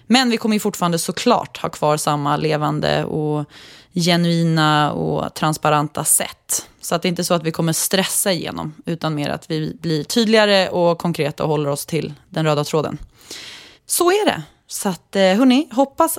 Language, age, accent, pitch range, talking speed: English, 20-39, Swedish, 155-215 Hz, 180 wpm